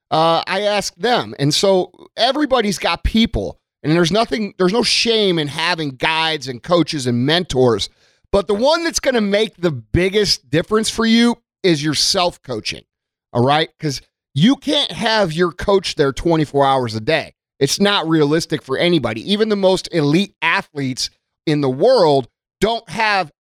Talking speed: 170 wpm